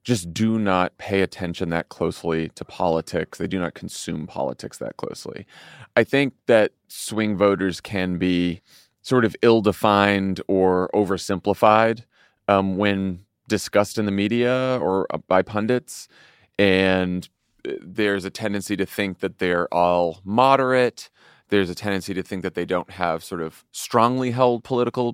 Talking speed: 145 wpm